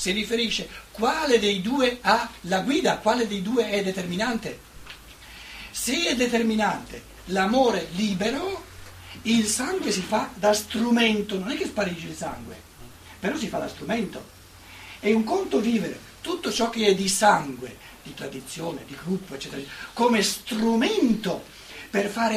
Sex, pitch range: male, 175-235 Hz